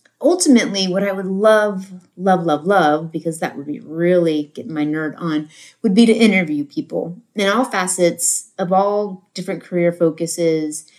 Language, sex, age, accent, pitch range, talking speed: English, female, 30-49, American, 160-205 Hz, 165 wpm